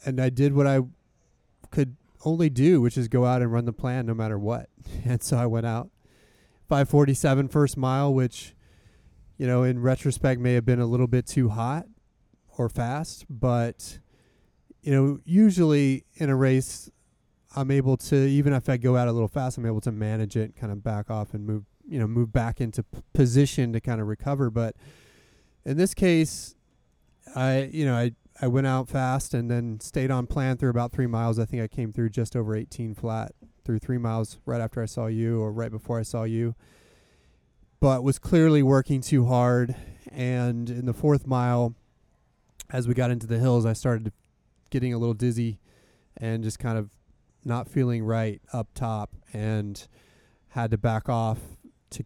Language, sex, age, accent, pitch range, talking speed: English, male, 30-49, American, 115-130 Hz, 190 wpm